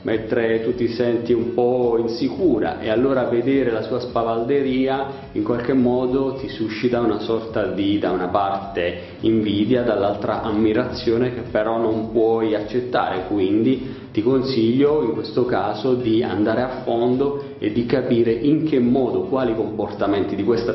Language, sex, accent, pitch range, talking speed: Italian, male, native, 115-140 Hz, 150 wpm